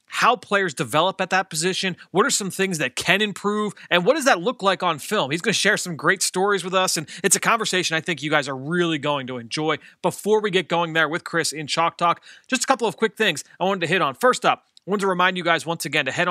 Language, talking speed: English, 280 wpm